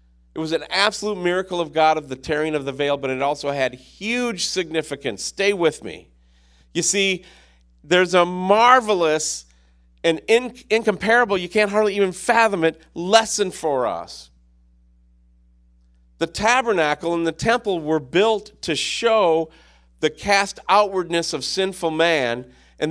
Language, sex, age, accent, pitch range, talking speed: English, male, 40-59, American, 145-195 Hz, 140 wpm